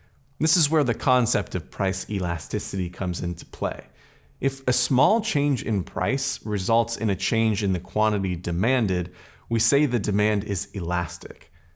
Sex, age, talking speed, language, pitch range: male, 30-49, 160 wpm, English, 95-120 Hz